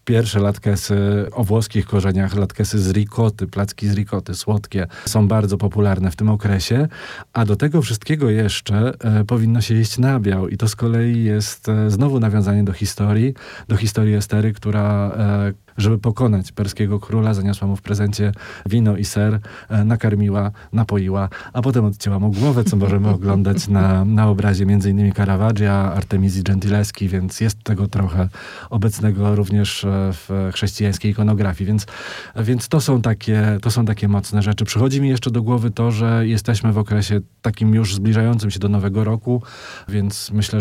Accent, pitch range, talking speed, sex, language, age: native, 100-110 Hz, 160 wpm, male, Polish, 40-59